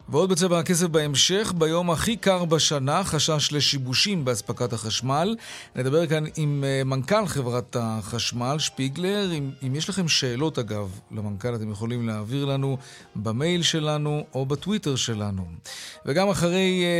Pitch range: 125-165 Hz